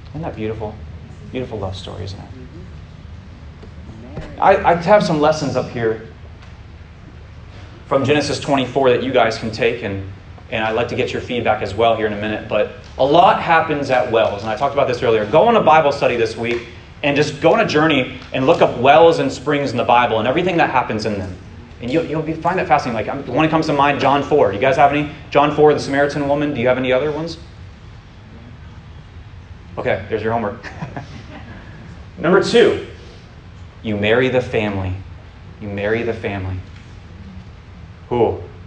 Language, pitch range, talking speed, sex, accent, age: English, 95-130 Hz, 190 wpm, male, American, 30-49